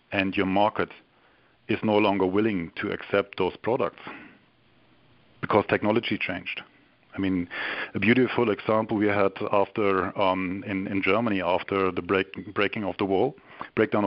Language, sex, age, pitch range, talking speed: English, male, 50-69, 100-110 Hz, 145 wpm